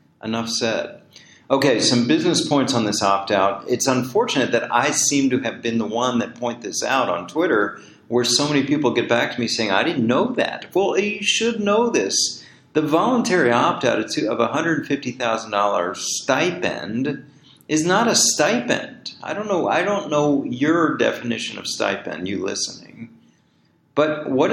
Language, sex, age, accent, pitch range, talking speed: English, male, 40-59, American, 105-145 Hz, 180 wpm